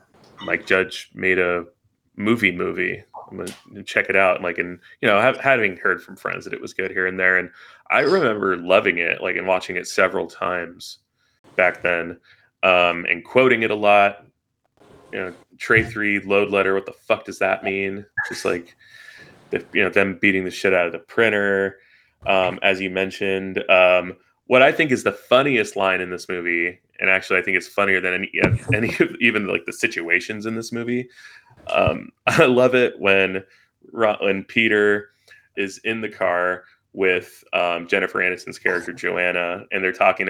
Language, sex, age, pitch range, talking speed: English, male, 20-39, 90-105 Hz, 185 wpm